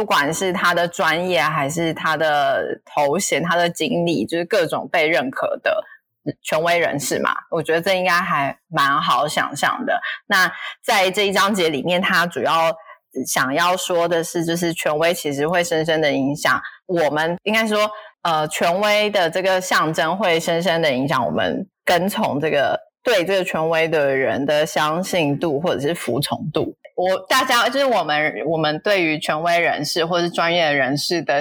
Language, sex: Chinese, female